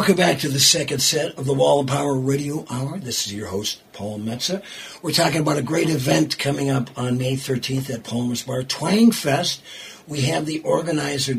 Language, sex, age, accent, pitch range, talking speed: English, male, 60-79, American, 125-145 Hz, 205 wpm